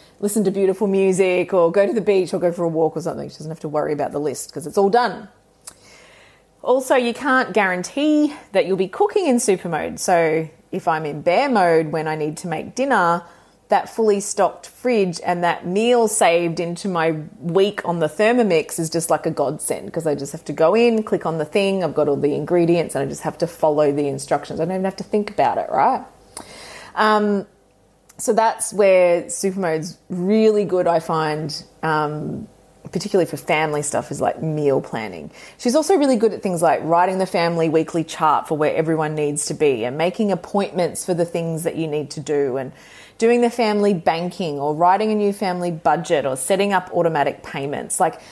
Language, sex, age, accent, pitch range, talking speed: English, female, 30-49, Australian, 160-200 Hz, 210 wpm